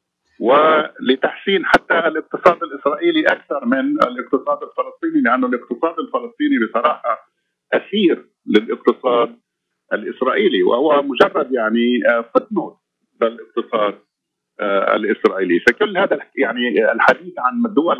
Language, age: Arabic, 50-69